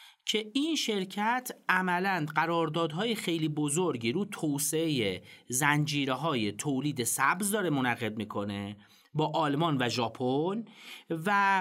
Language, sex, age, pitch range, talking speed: Persian, male, 40-59, 145-205 Hz, 105 wpm